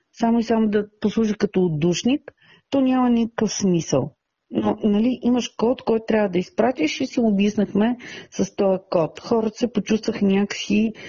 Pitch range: 185-225 Hz